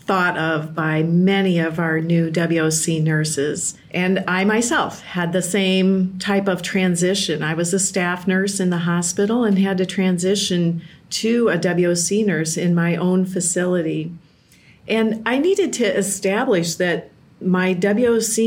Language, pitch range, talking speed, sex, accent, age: English, 175-210 Hz, 150 wpm, female, American, 40-59